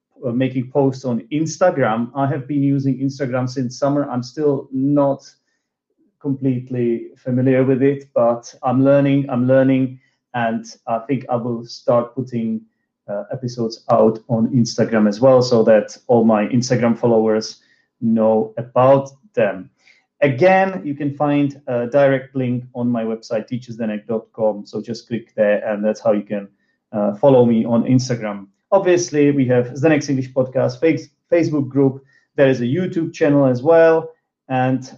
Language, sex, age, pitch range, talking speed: English, male, 30-49, 120-140 Hz, 155 wpm